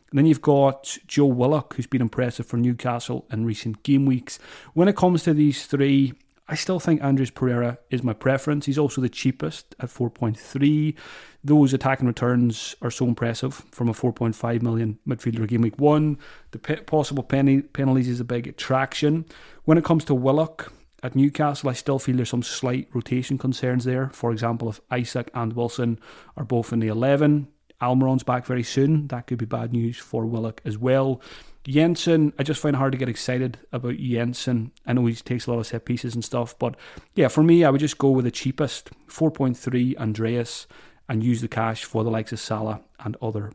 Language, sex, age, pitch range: English, male, 30-49, 120-145 Hz